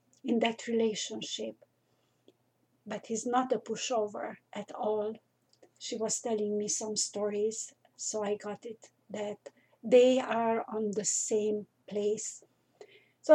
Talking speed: 125 wpm